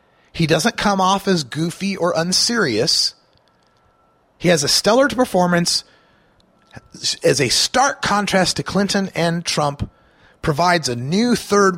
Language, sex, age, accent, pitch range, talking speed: English, male, 30-49, American, 150-205 Hz, 125 wpm